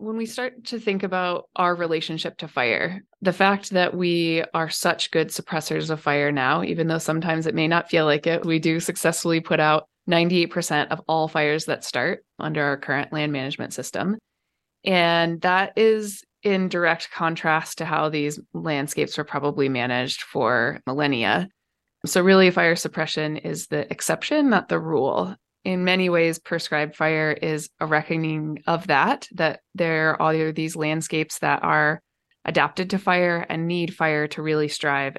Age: 20-39